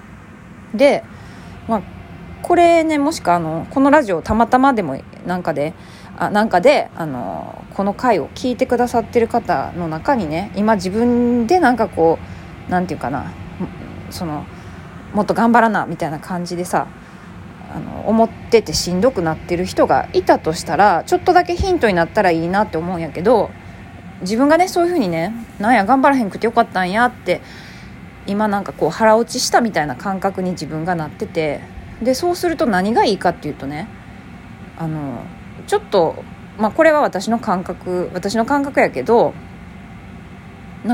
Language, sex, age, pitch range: Japanese, female, 20-39, 175-265 Hz